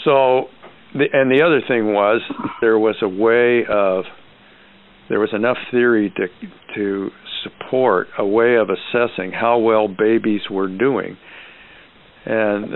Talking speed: 130 wpm